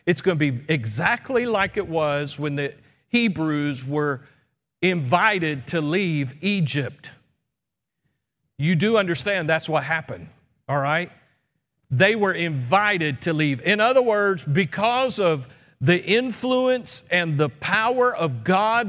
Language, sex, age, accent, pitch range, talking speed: English, male, 50-69, American, 145-195 Hz, 130 wpm